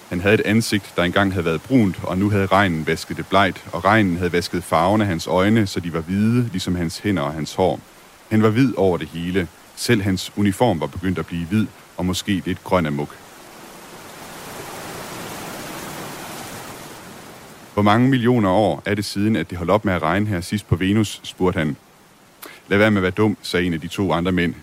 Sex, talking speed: male, 210 wpm